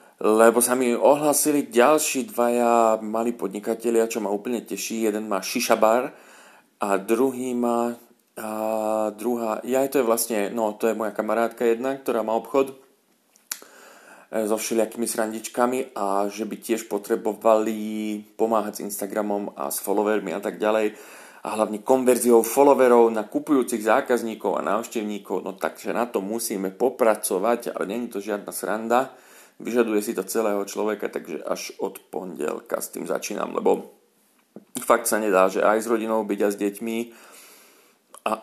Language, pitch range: Slovak, 105-120 Hz